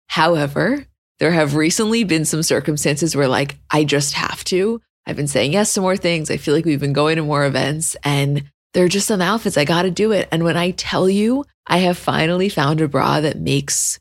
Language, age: English, 20-39